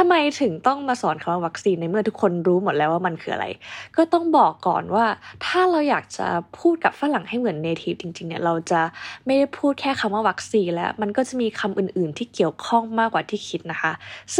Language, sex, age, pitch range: Thai, female, 20-39, 180-230 Hz